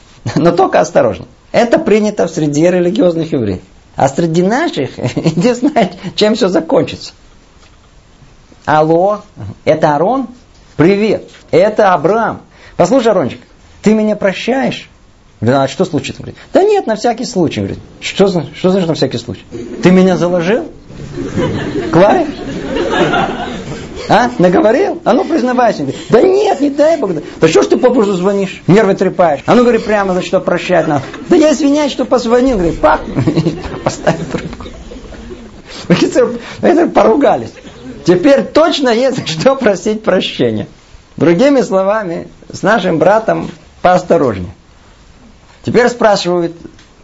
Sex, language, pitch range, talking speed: male, Russian, 160-240 Hz, 120 wpm